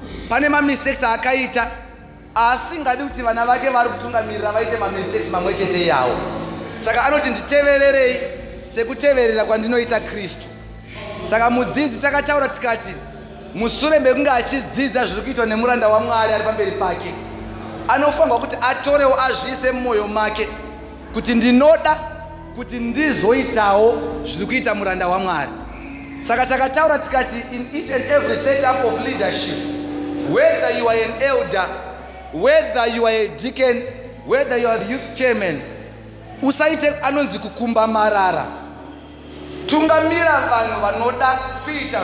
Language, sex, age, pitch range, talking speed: English, male, 30-49, 225-290 Hz, 115 wpm